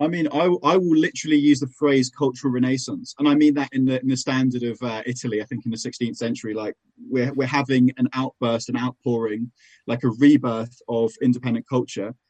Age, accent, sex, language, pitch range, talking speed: 20-39, British, male, English, 115-130 Hz, 210 wpm